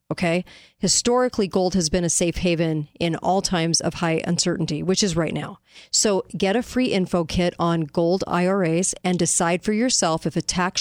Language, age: English, 40-59